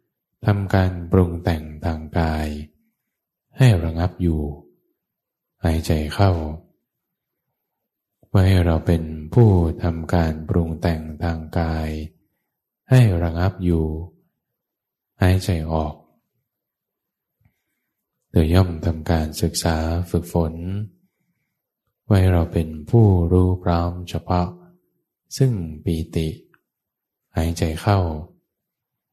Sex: male